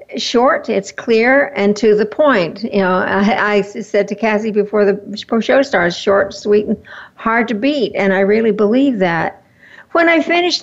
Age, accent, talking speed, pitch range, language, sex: 60-79, American, 180 wpm, 200-270 Hz, English, female